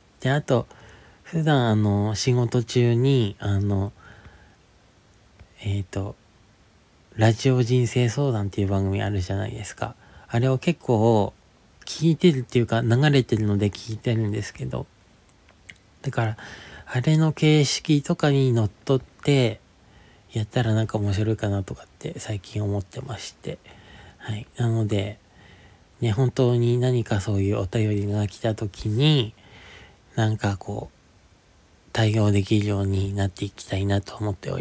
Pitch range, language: 100-120 Hz, Japanese